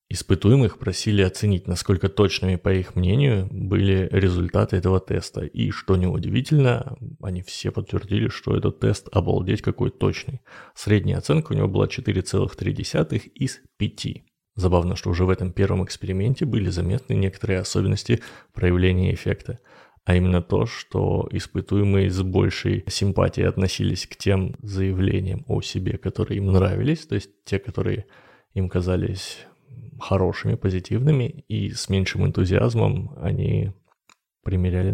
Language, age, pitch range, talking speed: Russian, 20-39, 95-115 Hz, 130 wpm